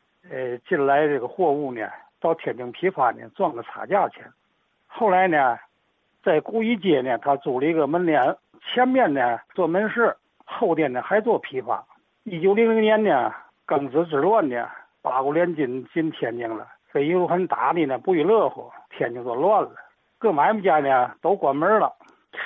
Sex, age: male, 60-79